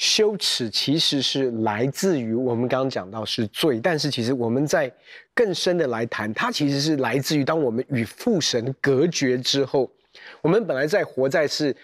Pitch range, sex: 135-225 Hz, male